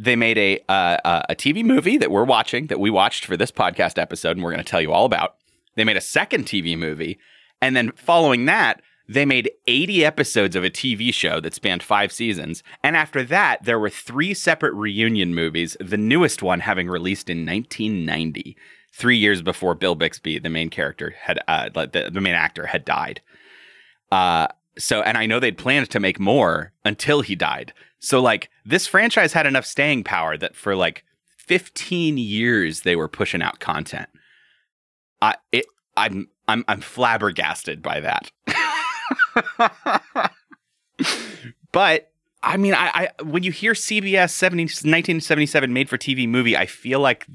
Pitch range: 100-160 Hz